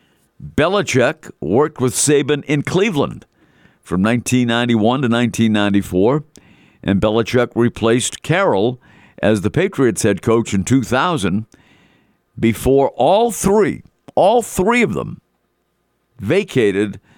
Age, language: 50-69, English